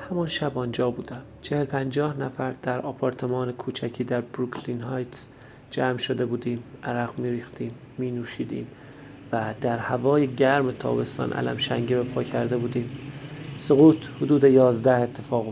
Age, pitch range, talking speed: 30-49, 120-135 Hz, 130 wpm